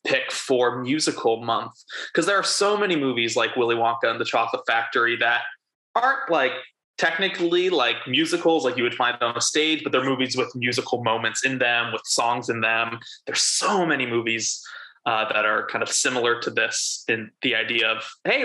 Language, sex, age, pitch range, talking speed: English, male, 20-39, 120-165 Hz, 190 wpm